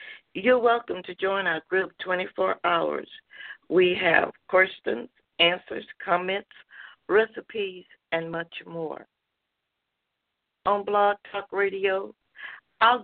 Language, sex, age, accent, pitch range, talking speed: English, female, 60-79, American, 165-265 Hz, 100 wpm